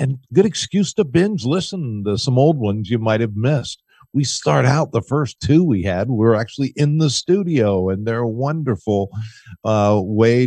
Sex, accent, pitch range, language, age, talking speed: male, American, 100-135 Hz, English, 50-69, 195 wpm